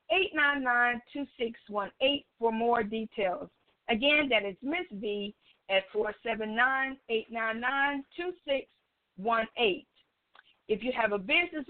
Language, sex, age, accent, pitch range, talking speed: English, female, 50-69, American, 205-270 Hz, 80 wpm